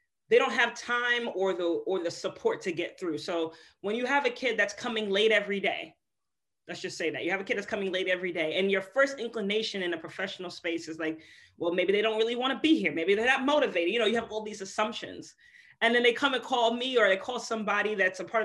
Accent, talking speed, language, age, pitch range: American, 260 wpm, English, 30-49, 190-245 Hz